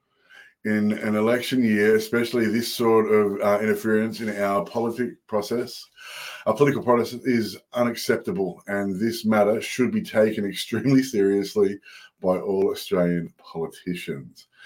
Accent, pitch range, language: Australian, 95-115 Hz, English